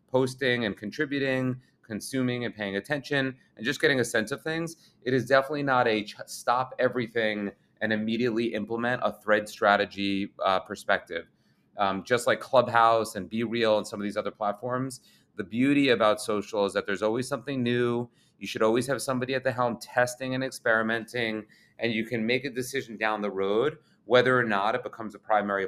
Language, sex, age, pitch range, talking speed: English, male, 30-49, 105-125 Hz, 185 wpm